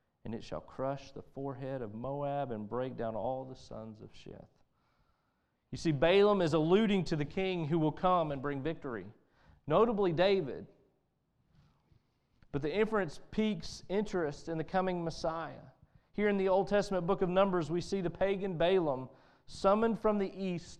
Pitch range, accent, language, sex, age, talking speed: 130-175 Hz, American, English, male, 40-59, 165 wpm